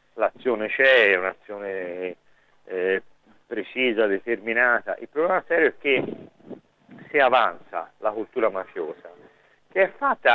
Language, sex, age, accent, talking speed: Italian, male, 50-69, native, 115 wpm